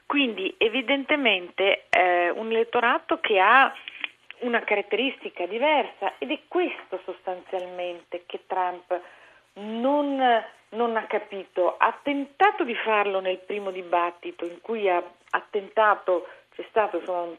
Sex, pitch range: female, 180-230 Hz